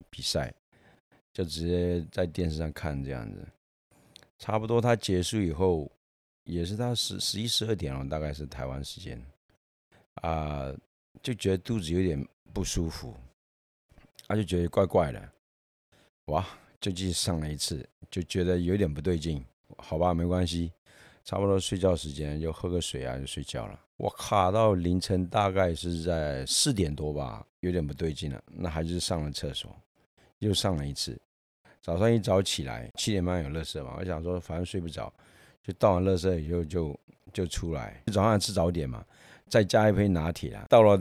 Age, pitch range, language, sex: 50-69, 75-100 Hz, Chinese, male